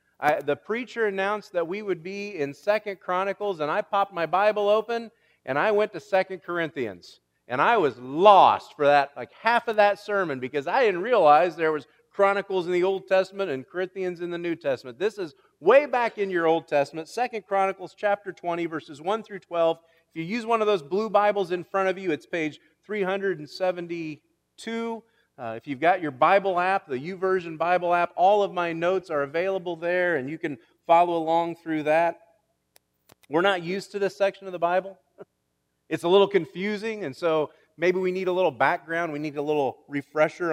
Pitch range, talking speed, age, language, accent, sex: 155-195 Hz, 195 wpm, 40-59, English, American, male